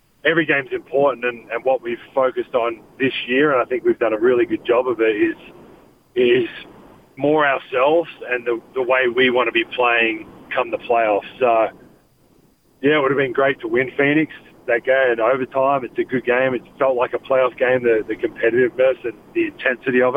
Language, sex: English, male